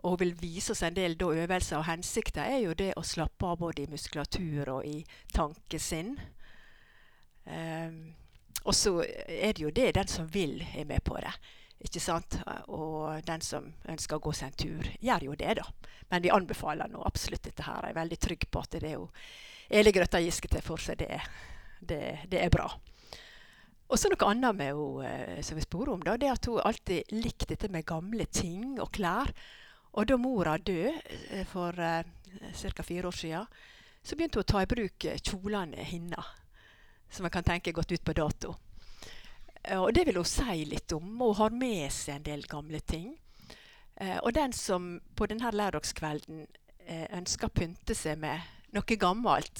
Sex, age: female, 60-79